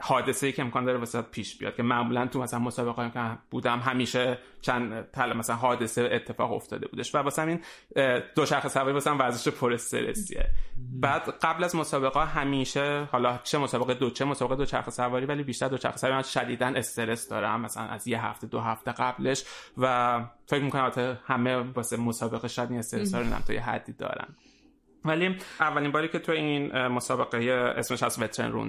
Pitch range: 120-145 Hz